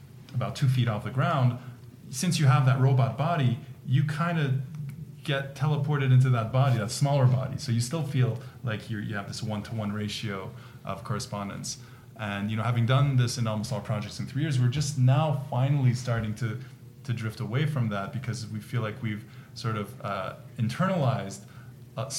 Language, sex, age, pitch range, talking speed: English, male, 20-39, 115-130 Hz, 185 wpm